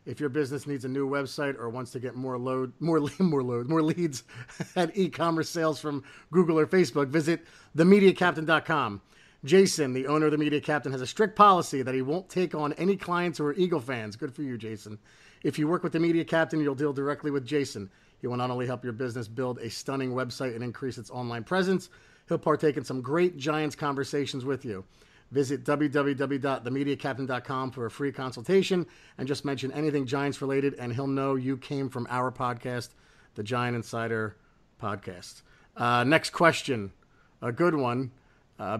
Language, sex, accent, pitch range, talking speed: English, male, American, 125-155 Hz, 185 wpm